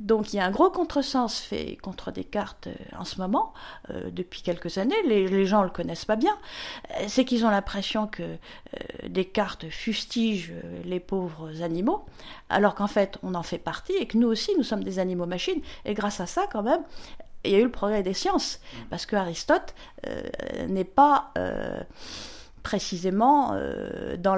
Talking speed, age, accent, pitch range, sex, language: 180 wpm, 50-69, French, 180-240 Hz, female, French